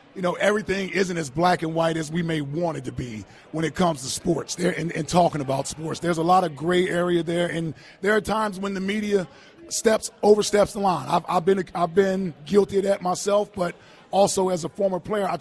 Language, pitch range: English, 160-195 Hz